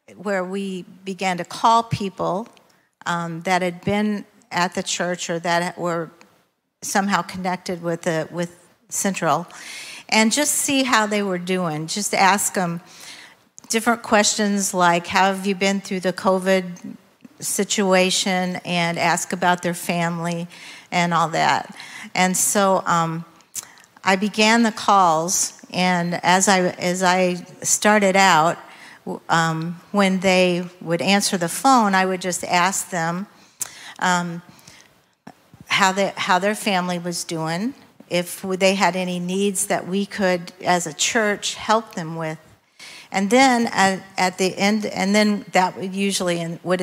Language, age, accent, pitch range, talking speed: English, 50-69, American, 175-205 Hz, 145 wpm